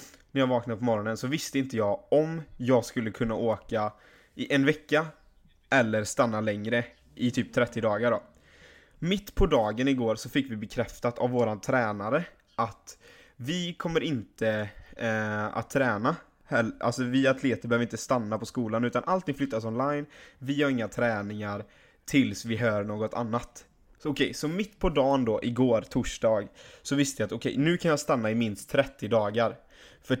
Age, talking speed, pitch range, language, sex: 20-39, 175 wpm, 110-135 Hz, Swedish, male